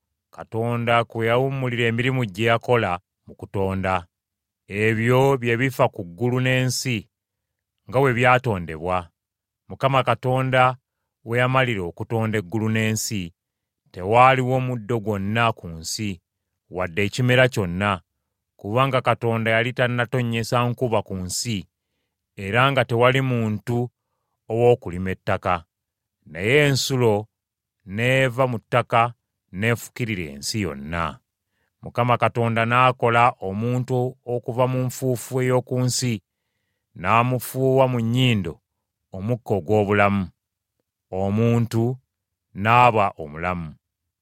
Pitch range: 100-125 Hz